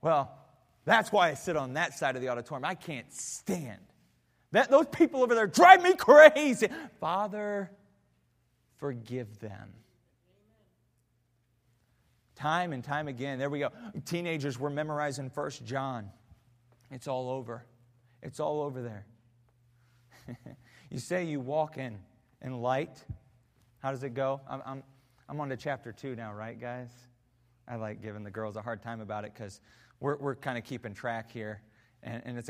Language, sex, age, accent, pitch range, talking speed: English, male, 30-49, American, 120-150 Hz, 160 wpm